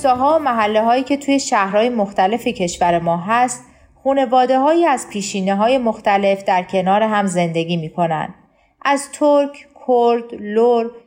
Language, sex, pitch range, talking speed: Persian, female, 190-255 Hz, 145 wpm